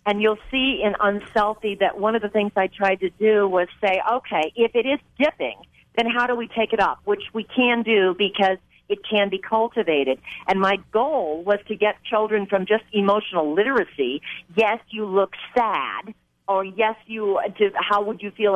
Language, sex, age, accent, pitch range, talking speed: English, female, 50-69, American, 170-220 Hz, 190 wpm